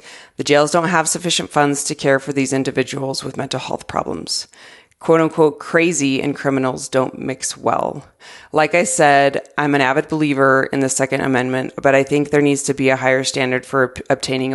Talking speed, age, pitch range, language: 190 wpm, 30-49, 135-155 Hz, English